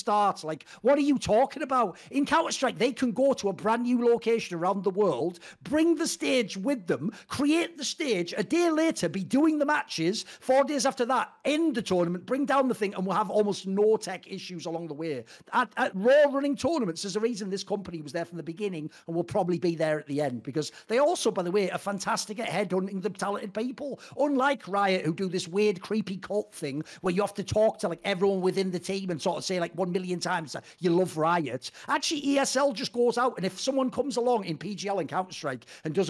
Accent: British